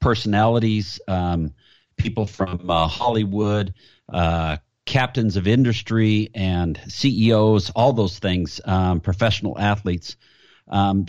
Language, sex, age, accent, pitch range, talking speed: English, male, 50-69, American, 100-120 Hz, 105 wpm